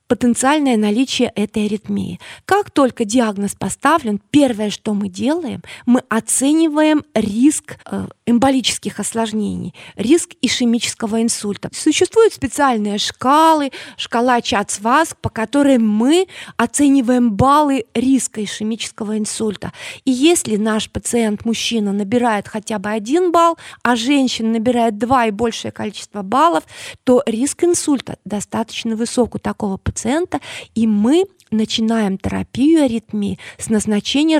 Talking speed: 115 wpm